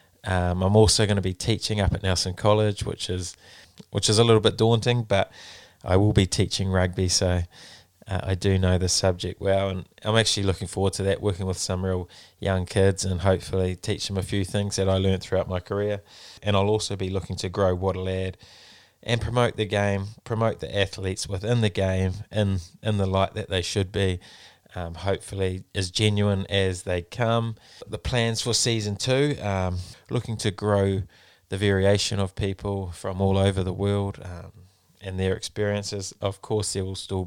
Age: 20-39